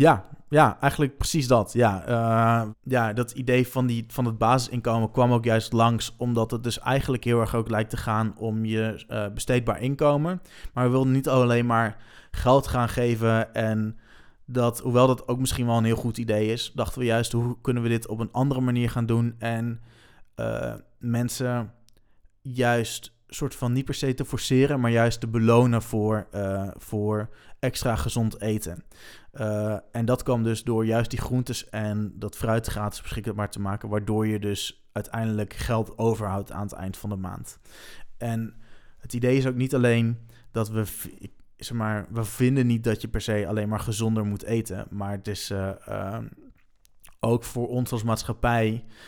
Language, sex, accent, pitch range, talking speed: Dutch, male, Dutch, 110-125 Hz, 185 wpm